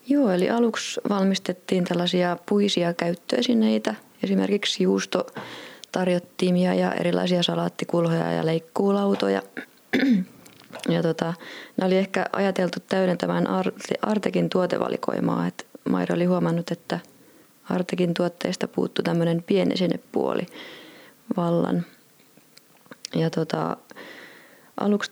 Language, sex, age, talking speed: Finnish, female, 30-49, 90 wpm